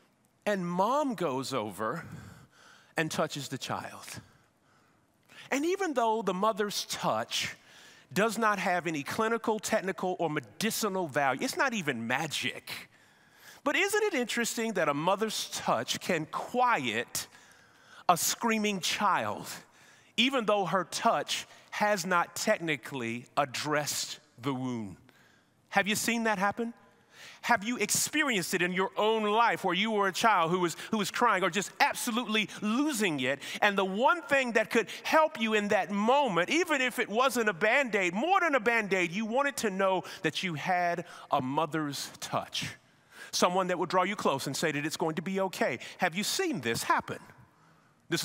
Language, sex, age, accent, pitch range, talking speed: English, male, 40-59, American, 170-230 Hz, 160 wpm